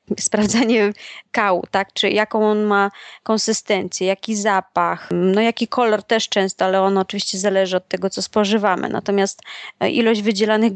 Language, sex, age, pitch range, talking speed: Polish, female, 20-39, 195-230 Hz, 145 wpm